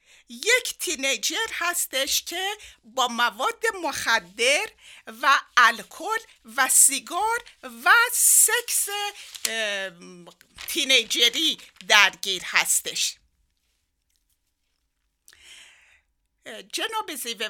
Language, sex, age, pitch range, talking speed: Persian, female, 60-79, 225-360 Hz, 60 wpm